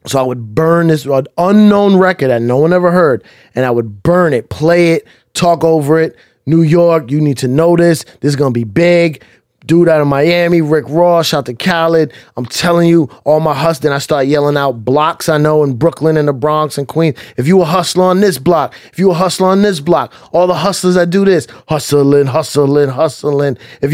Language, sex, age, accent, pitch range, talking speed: English, male, 20-39, American, 145-180 Hz, 225 wpm